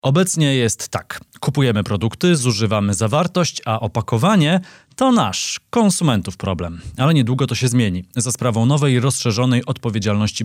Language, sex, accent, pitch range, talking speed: Polish, male, native, 105-130 Hz, 130 wpm